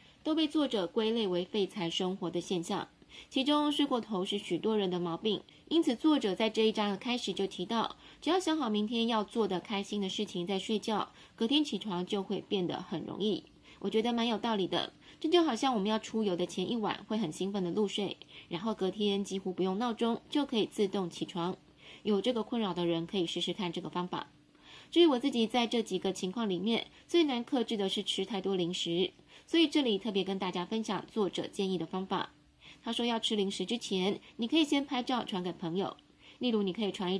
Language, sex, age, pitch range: Chinese, female, 20-39, 185-230 Hz